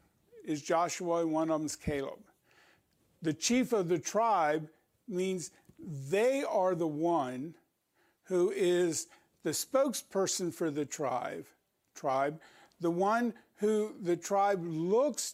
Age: 50-69